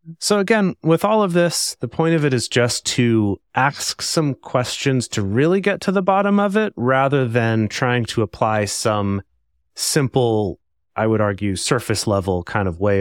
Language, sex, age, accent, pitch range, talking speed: English, male, 30-49, American, 100-130 Hz, 180 wpm